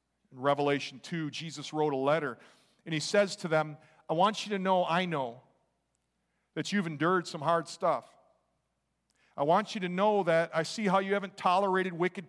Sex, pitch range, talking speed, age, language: male, 130-190 Hz, 185 wpm, 50-69, English